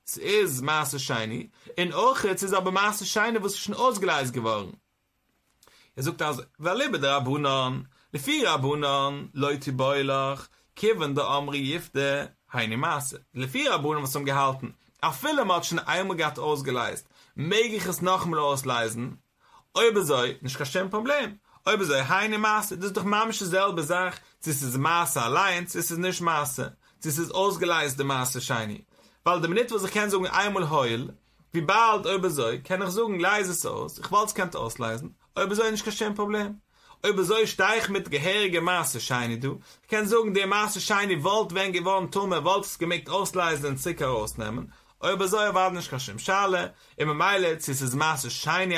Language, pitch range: English, 140-200 Hz